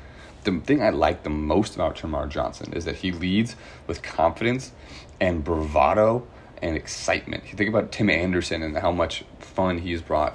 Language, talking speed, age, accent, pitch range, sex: English, 180 wpm, 30-49, American, 80-100 Hz, male